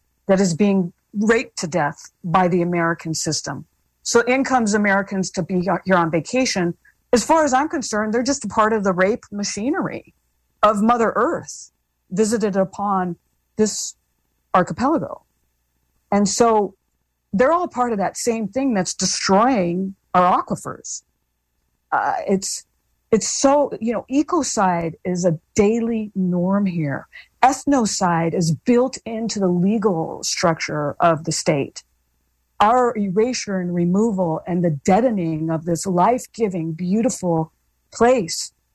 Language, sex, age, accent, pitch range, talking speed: English, female, 50-69, American, 170-230 Hz, 135 wpm